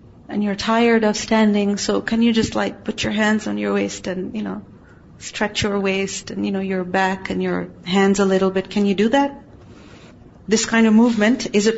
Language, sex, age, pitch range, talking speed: English, female, 40-59, 205-255 Hz, 220 wpm